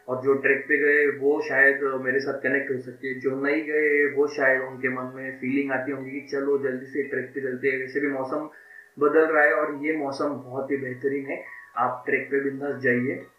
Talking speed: 220 wpm